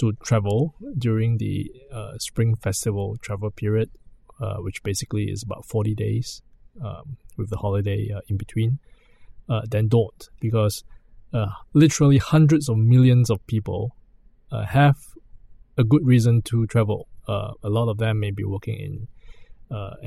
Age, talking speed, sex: 20-39, 150 wpm, male